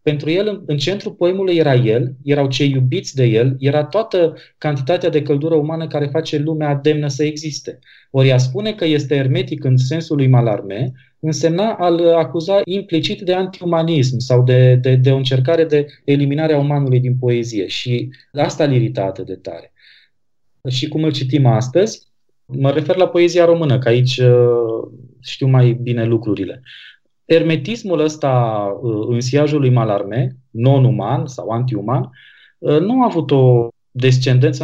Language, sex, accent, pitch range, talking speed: Romanian, male, native, 120-155 Hz, 150 wpm